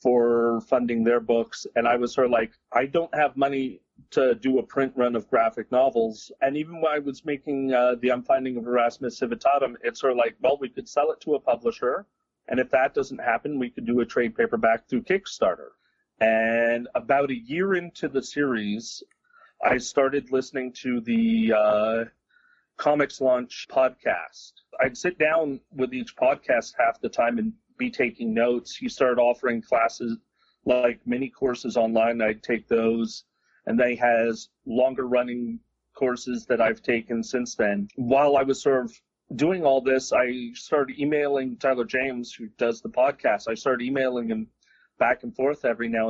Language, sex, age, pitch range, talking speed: English, male, 40-59, 115-140 Hz, 175 wpm